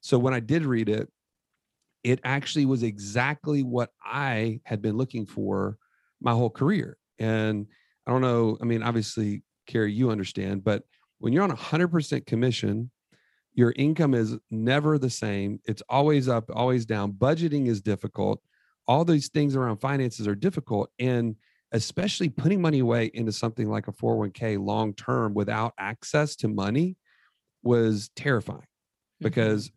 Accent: American